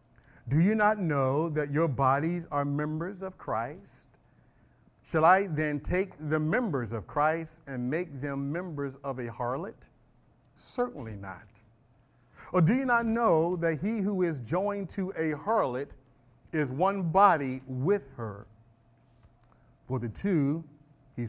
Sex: male